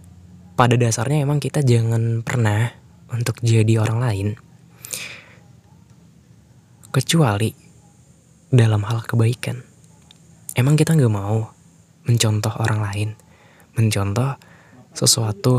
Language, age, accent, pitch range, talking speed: Indonesian, 10-29, native, 110-135 Hz, 90 wpm